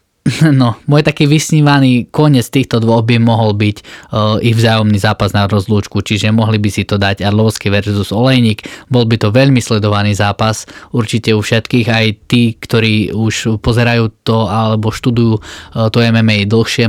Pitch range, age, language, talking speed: 105-115 Hz, 20-39, Slovak, 160 wpm